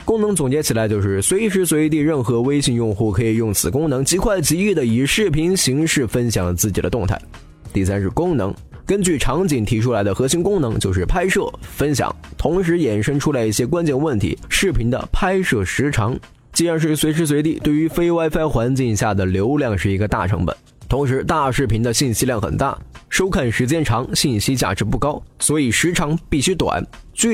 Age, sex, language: 20-39, male, Chinese